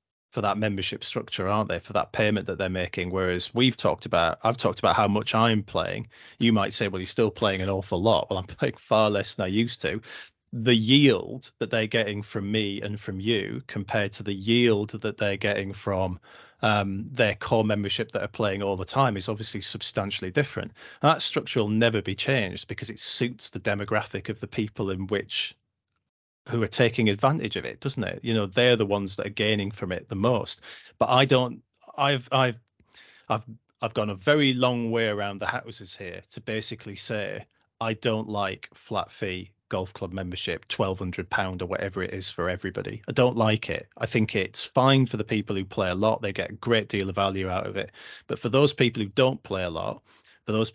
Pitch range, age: 100-115 Hz, 30-49